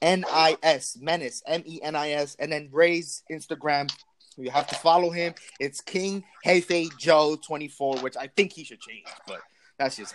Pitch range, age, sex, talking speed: 150-195 Hz, 20-39, male, 195 wpm